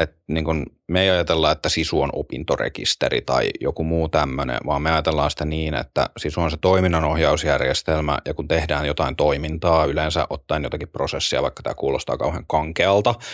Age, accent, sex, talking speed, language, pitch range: 30-49, native, male, 160 wpm, Finnish, 75-90 Hz